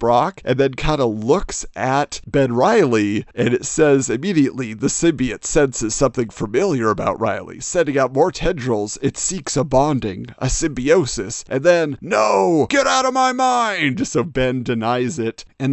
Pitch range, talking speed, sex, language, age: 125-180 Hz, 165 wpm, male, English, 40-59